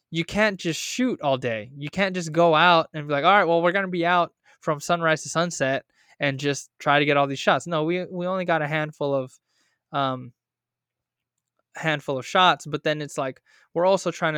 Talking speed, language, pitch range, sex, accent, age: 220 wpm, English, 140-160 Hz, male, American, 20-39